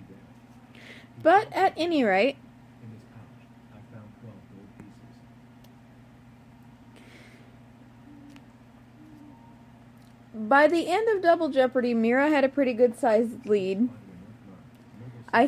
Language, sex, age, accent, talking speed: English, female, 30-49, American, 65 wpm